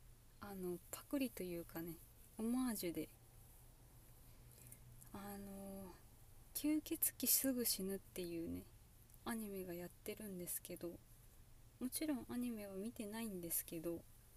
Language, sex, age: Japanese, female, 20-39